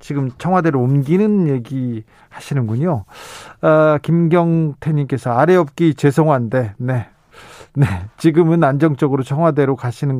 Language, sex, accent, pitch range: Korean, male, native, 140-185 Hz